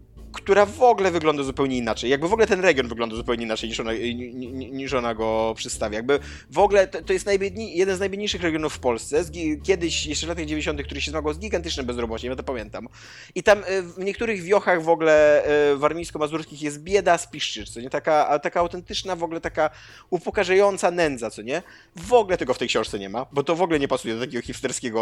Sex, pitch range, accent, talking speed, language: male, 120-170 Hz, native, 210 wpm, Polish